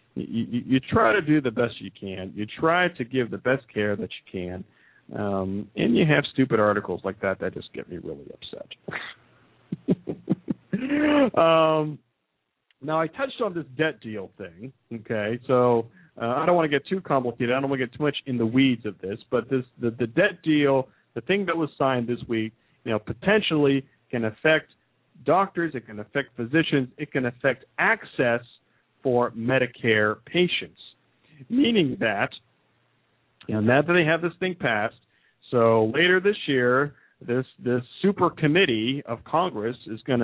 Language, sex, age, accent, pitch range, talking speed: English, male, 40-59, American, 115-155 Hz, 175 wpm